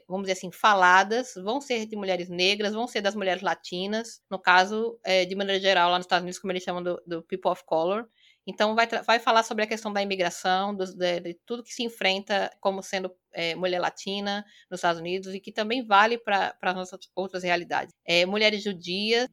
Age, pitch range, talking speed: 20-39, 185-230 Hz, 200 wpm